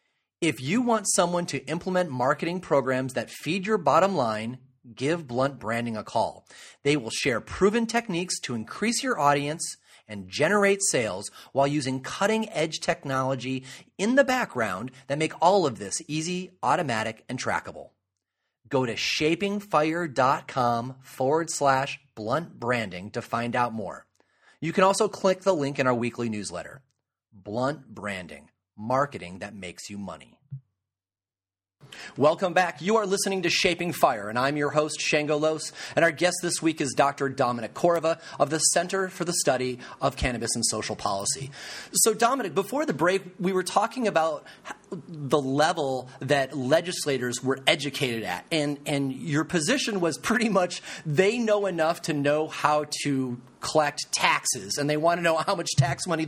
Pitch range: 130-180 Hz